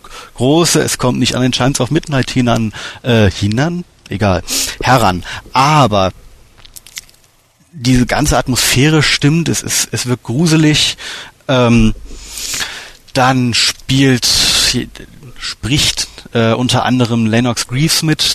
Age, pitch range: 30-49, 110-135 Hz